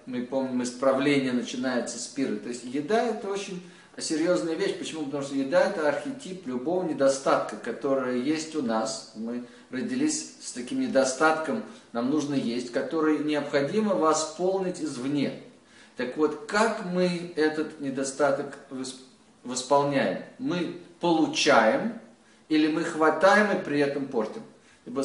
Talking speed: 130 wpm